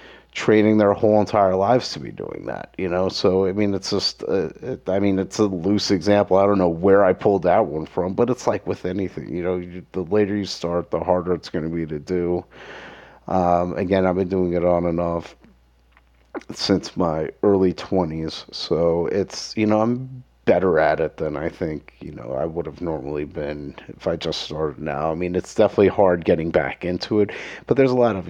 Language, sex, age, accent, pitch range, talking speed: English, male, 30-49, American, 85-95 Hz, 215 wpm